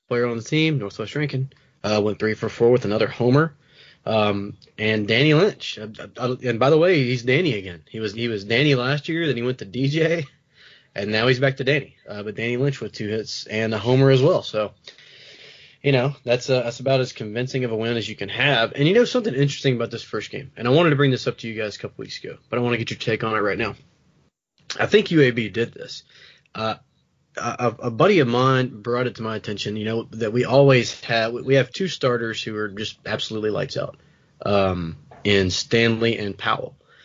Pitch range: 110-140 Hz